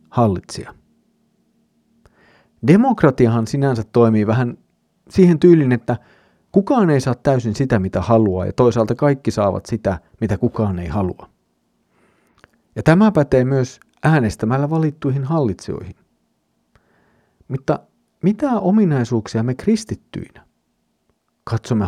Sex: male